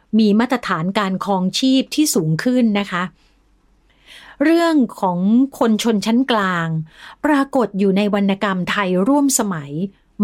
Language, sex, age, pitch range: Thai, female, 30-49, 180-235 Hz